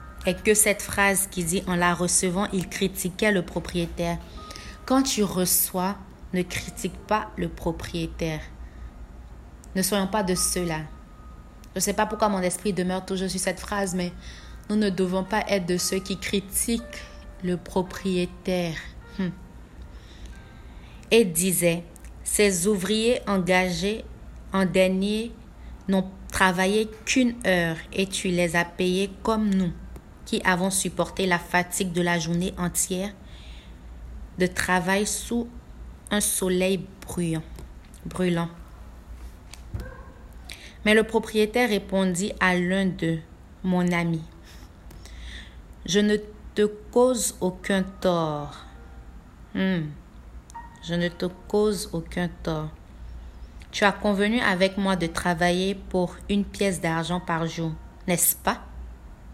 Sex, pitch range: female, 165-200 Hz